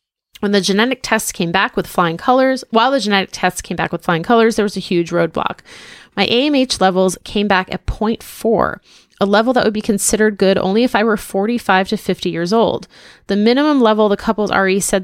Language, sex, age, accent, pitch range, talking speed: English, female, 20-39, American, 175-225 Hz, 210 wpm